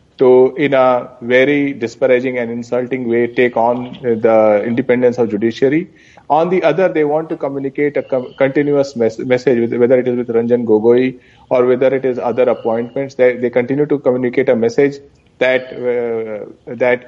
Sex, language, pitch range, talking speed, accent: male, English, 120-140 Hz, 170 wpm, Indian